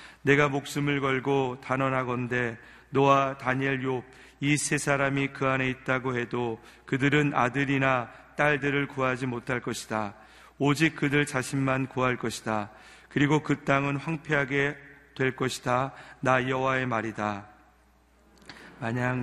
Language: Korean